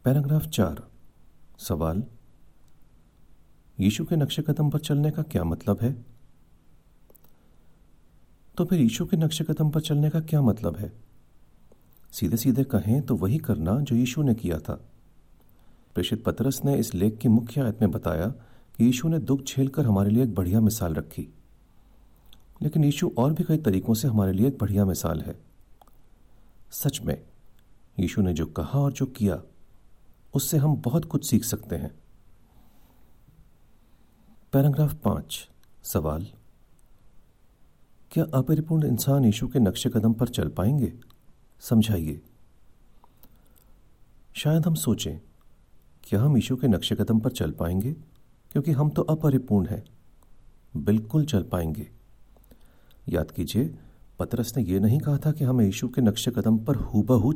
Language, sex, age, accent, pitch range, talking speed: Hindi, male, 40-59, native, 95-140 Hz, 140 wpm